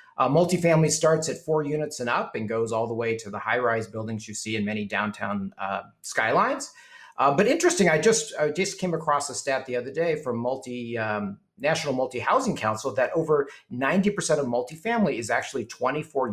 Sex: male